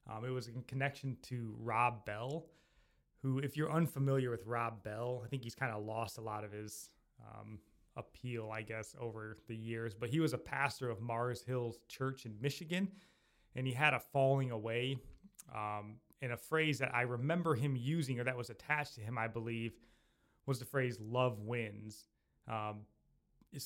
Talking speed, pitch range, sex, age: 185 wpm, 115-135 Hz, male, 20-39